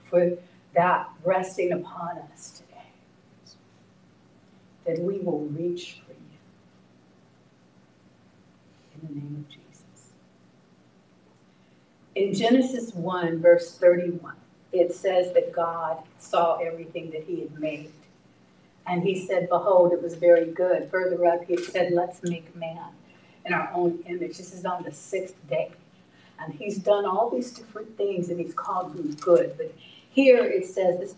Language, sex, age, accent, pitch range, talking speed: English, female, 50-69, American, 145-195 Hz, 140 wpm